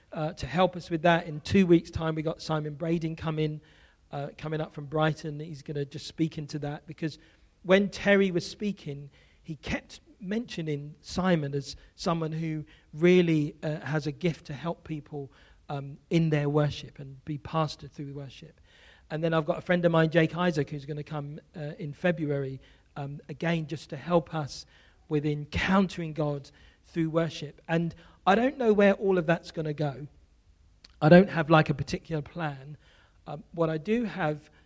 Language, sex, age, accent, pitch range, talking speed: English, male, 40-59, British, 145-170 Hz, 185 wpm